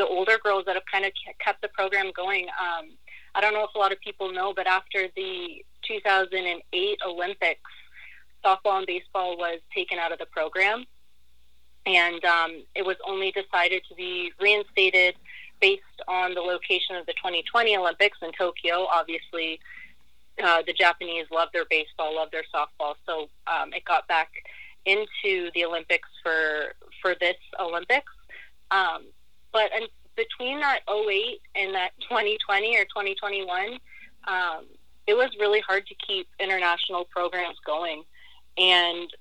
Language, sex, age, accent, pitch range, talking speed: English, female, 30-49, American, 170-215 Hz, 145 wpm